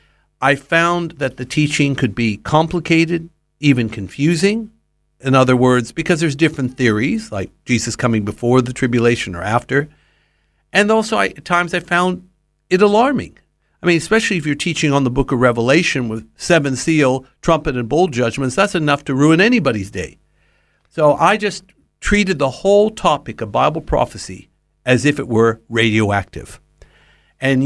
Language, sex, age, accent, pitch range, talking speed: English, male, 60-79, American, 115-160 Hz, 160 wpm